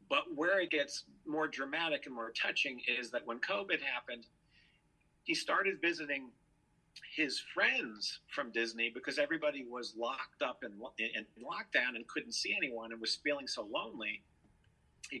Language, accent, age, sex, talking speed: English, American, 50-69, male, 160 wpm